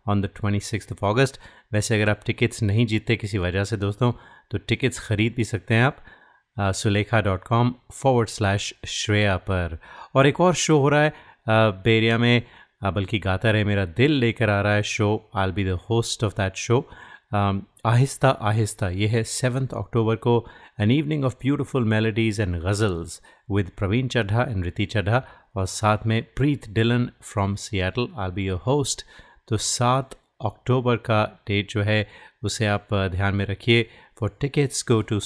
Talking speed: 170 wpm